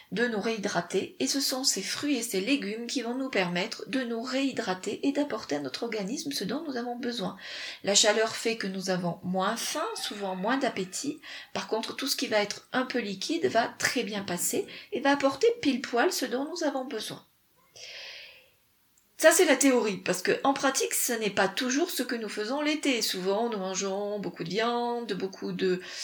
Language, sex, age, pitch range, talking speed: French, female, 40-59, 185-250 Hz, 205 wpm